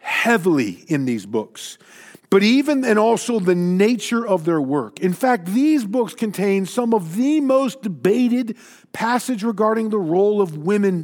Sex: male